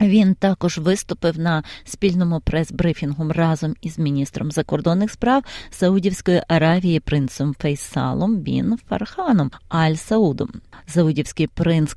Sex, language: female, Ukrainian